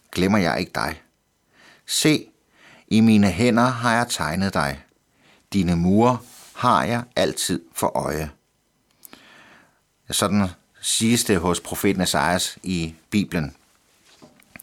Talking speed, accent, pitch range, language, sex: 110 wpm, native, 95-120 Hz, Danish, male